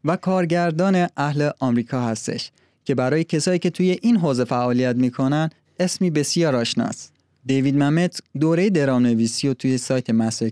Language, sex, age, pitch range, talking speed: Persian, male, 30-49, 120-165 Hz, 150 wpm